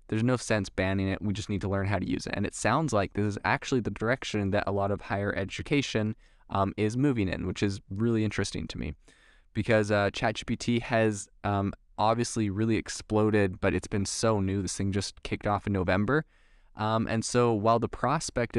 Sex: male